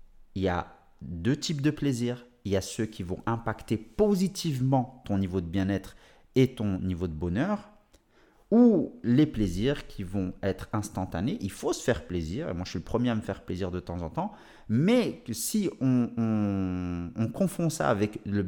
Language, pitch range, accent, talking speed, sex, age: French, 100-130 Hz, French, 190 wpm, male, 30-49